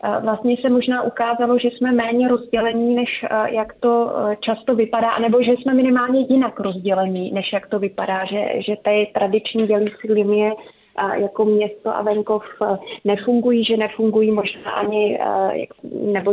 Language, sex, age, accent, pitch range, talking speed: Czech, female, 30-49, native, 195-225 Hz, 145 wpm